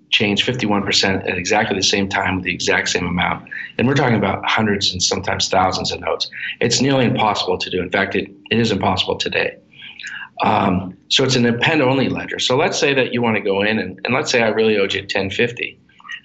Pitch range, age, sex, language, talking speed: 100-120 Hz, 40-59, male, English, 220 wpm